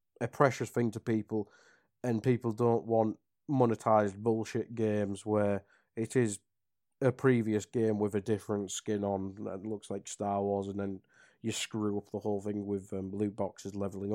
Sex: male